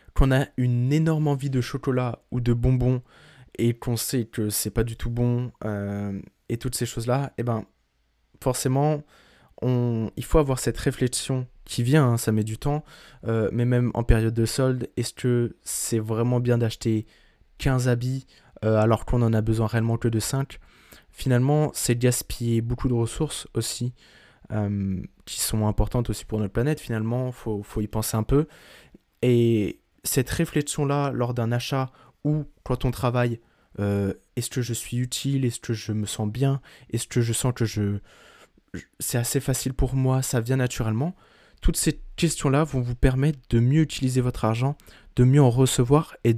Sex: male